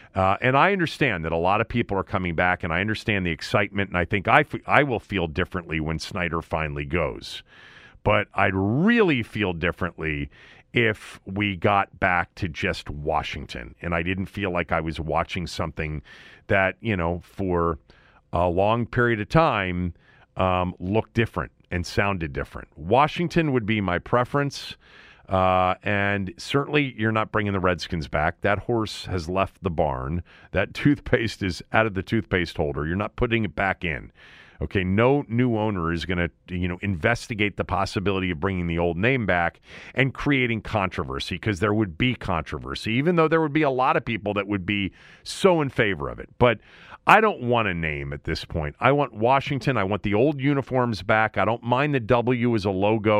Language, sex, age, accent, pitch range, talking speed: English, male, 40-59, American, 85-115 Hz, 190 wpm